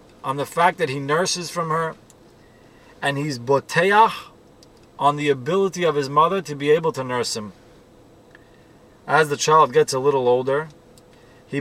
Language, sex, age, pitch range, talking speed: English, male, 30-49, 145-185 Hz, 160 wpm